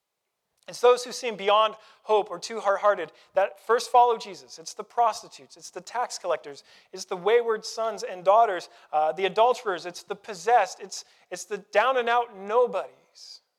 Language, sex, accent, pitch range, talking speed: English, male, American, 180-225 Hz, 165 wpm